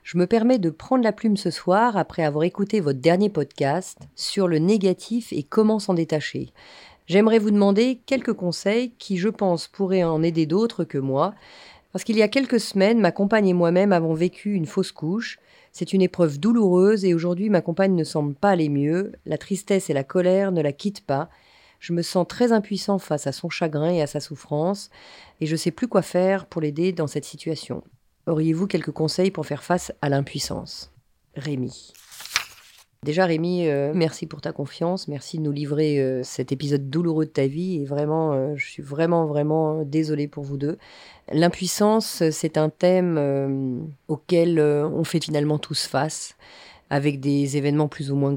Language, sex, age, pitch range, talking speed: French, female, 40-59, 150-190 Hz, 190 wpm